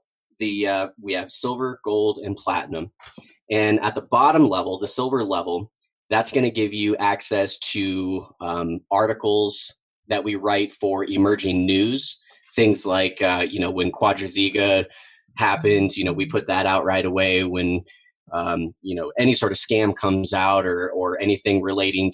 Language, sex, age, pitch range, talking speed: English, male, 20-39, 95-115 Hz, 165 wpm